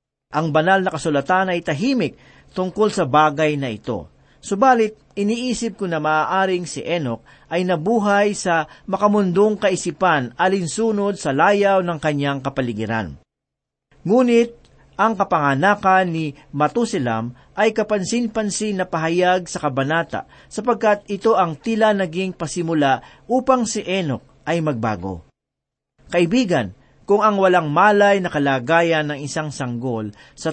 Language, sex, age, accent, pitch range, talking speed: Filipino, male, 40-59, native, 145-205 Hz, 120 wpm